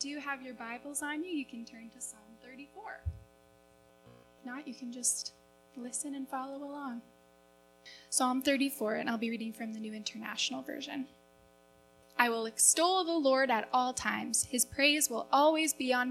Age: 10-29